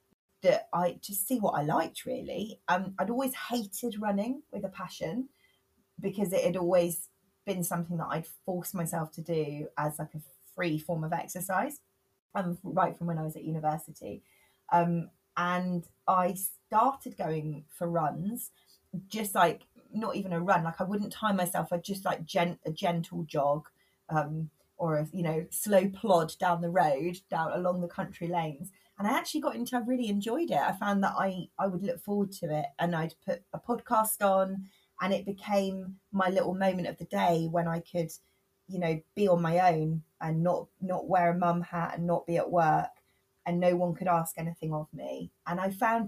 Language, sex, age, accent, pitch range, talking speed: English, female, 20-39, British, 165-195 Hz, 195 wpm